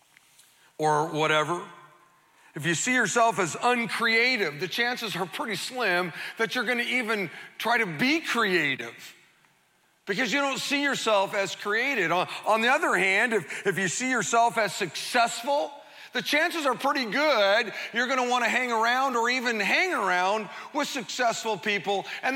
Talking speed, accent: 160 wpm, American